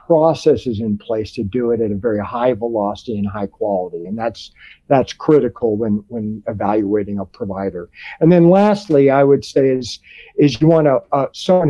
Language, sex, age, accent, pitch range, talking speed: English, male, 50-69, American, 115-155 Hz, 180 wpm